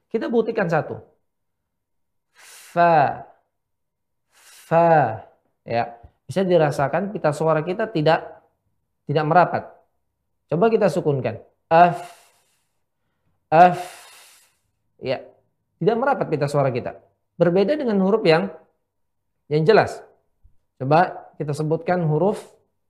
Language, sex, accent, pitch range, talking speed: Indonesian, male, native, 125-185 Hz, 90 wpm